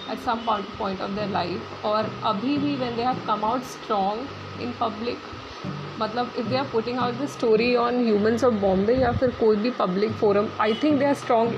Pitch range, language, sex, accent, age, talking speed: 210-255 Hz, Hindi, female, native, 30-49, 200 wpm